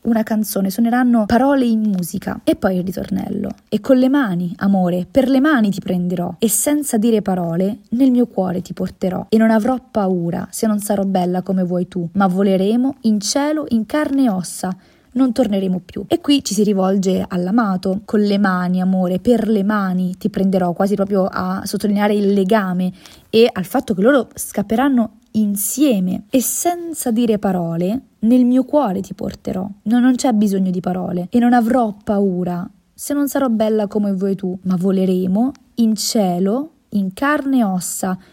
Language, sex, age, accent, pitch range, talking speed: Italian, female, 20-39, native, 190-245 Hz, 175 wpm